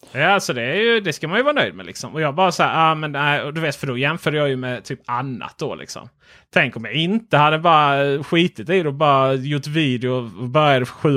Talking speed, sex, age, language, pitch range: 240 wpm, male, 30-49, Swedish, 130-175 Hz